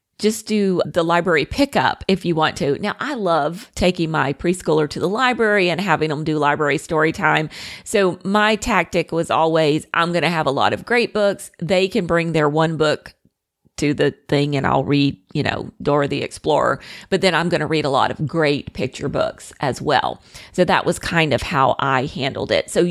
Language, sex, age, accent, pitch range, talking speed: English, female, 40-59, American, 155-205 Hz, 210 wpm